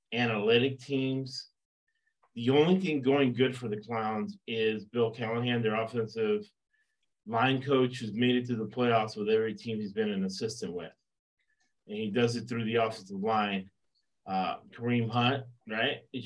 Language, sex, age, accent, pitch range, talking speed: English, male, 30-49, American, 115-150 Hz, 160 wpm